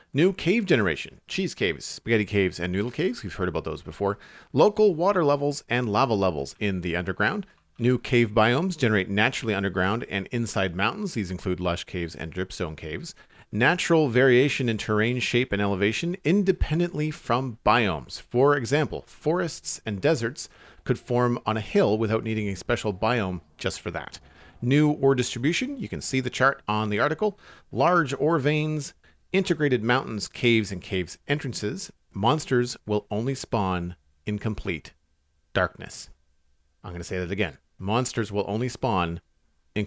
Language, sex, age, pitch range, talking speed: English, male, 40-59, 95-130 Hz, 160 wpm